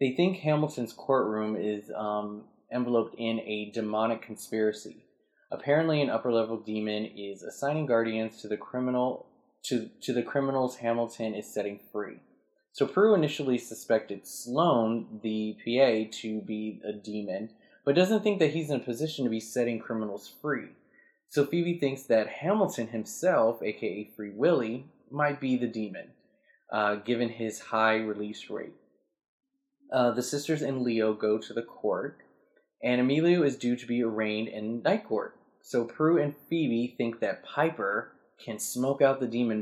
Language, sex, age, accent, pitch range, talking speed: English, male, 20-39, American, 110-135 Hz, 150 wpm